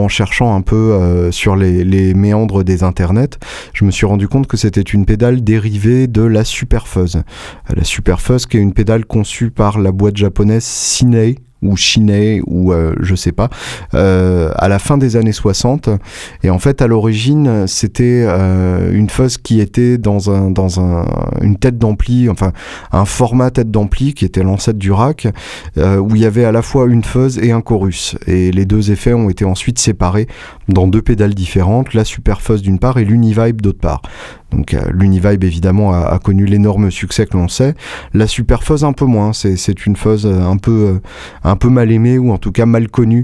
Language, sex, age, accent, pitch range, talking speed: French, male, 30-49, French, 95-115 Hz, 200 wpm